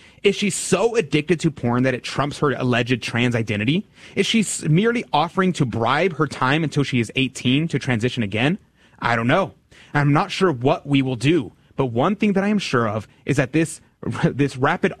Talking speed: 205 wpm